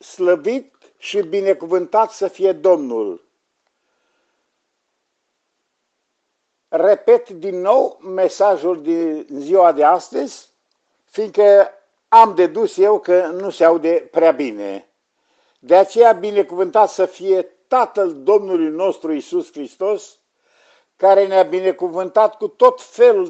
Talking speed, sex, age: 105 wpm, male, 50-69